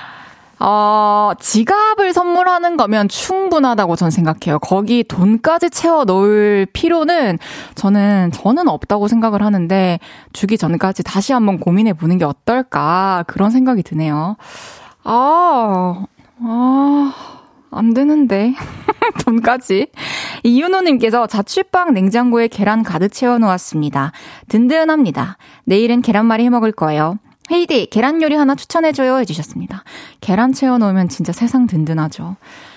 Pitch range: 180-255 Hz